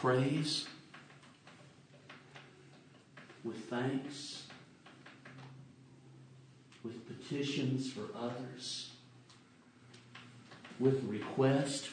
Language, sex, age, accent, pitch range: English, male, 50-69, American, 120-140 Hz